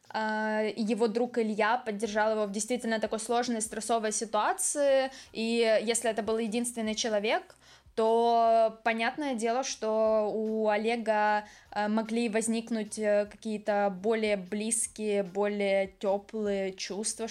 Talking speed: 105 wpm